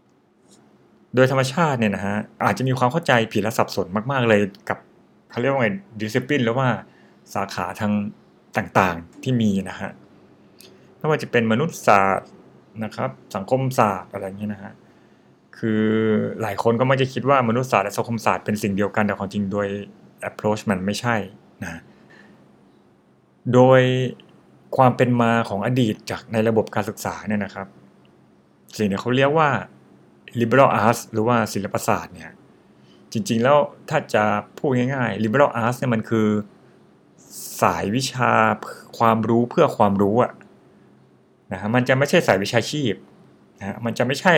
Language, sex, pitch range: Thai, male, 105-125 Hz